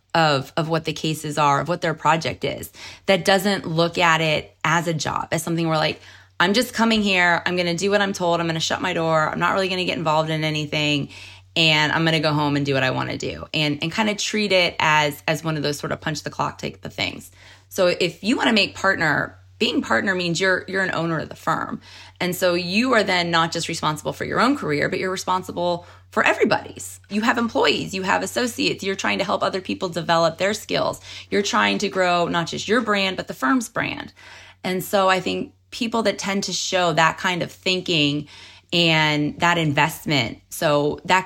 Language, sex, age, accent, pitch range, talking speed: English, female, 20-39, American, 155-190 Hz, 225 wpm